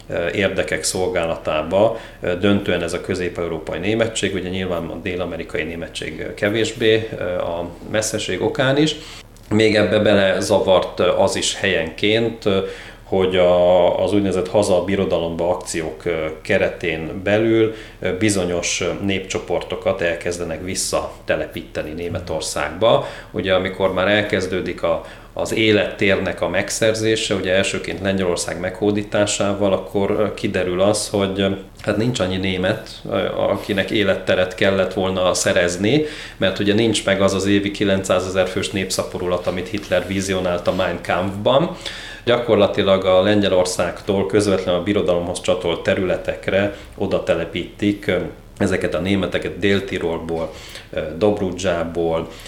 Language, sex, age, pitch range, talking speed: Hungarian, male, 30-49, 90-105 Hz, 110 wpm